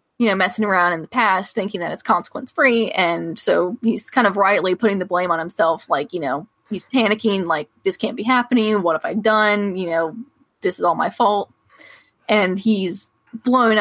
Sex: female